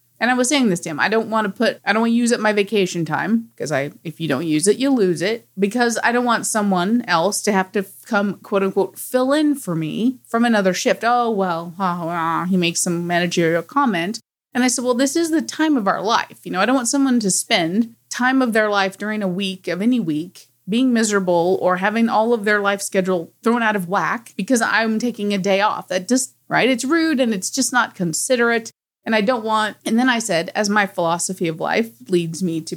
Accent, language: American, English